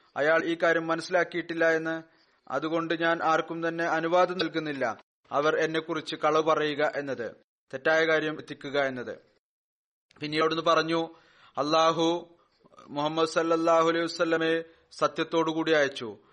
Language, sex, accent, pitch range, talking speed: Malayalam, male, native, 160-165 Hz, 120 wpm